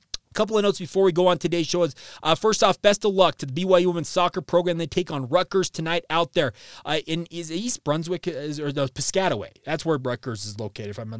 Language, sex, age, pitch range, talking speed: English, male, 30-49, 140-175 Hz, 235 wpm